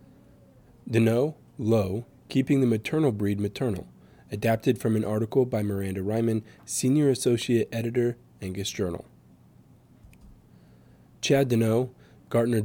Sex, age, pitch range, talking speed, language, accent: male, 20-39, 100-120 Hz, 105 wpm, English, American